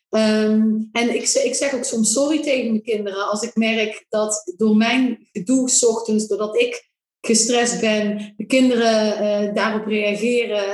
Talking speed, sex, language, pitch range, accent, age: 150 wpm, female, Dutch, 210-240 Hz, Dutch, 20-39